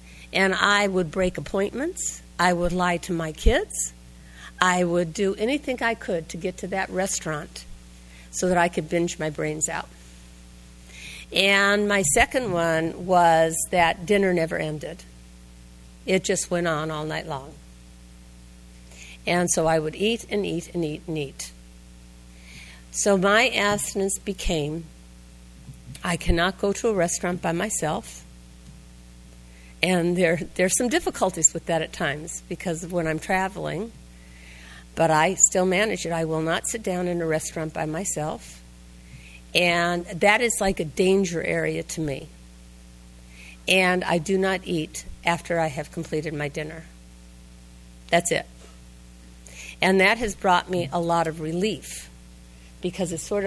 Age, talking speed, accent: 50-69, 150 wpm, American